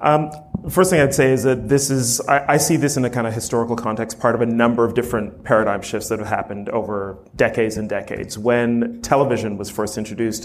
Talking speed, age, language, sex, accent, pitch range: 225 wpm, 30-49, English, male, American, 110-125 Hz